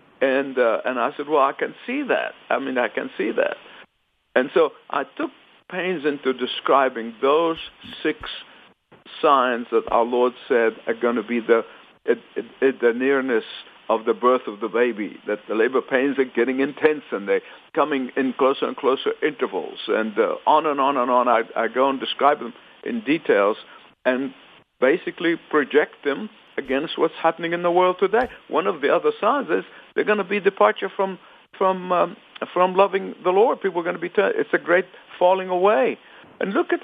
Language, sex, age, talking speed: English, male, 60-79, 200 wpm